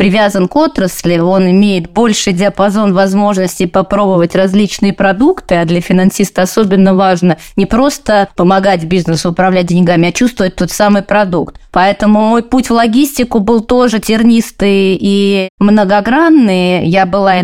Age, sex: 20-39, female